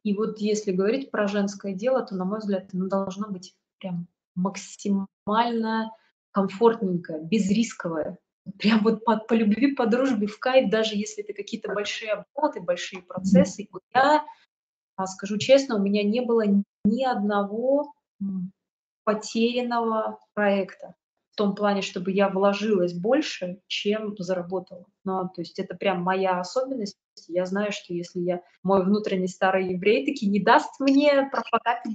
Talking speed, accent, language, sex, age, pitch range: 140 wpm, native, Russian, female, 20-39, 195-265 Hz